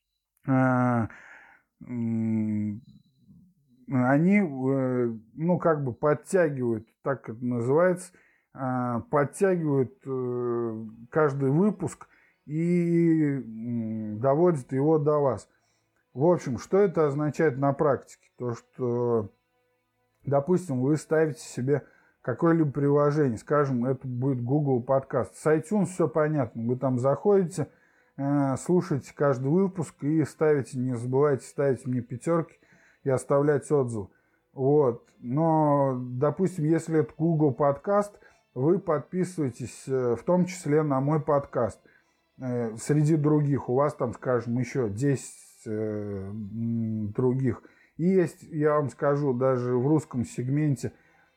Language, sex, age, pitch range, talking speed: Russian, male, 20-39, 125-155 Hz, 100 wpm